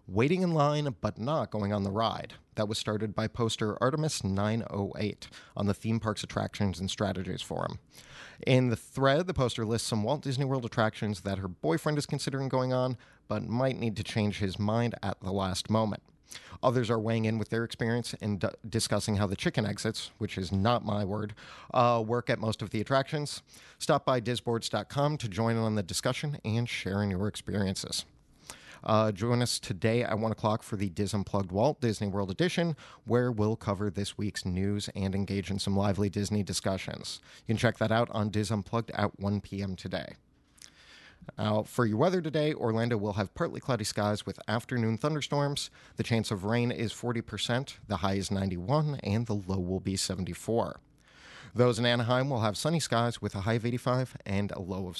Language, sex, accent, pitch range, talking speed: English, male, American, 100-120 Hz, 195 wpm